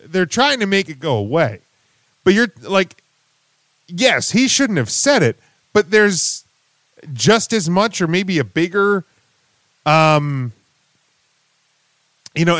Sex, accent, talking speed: male, American, 135 wpm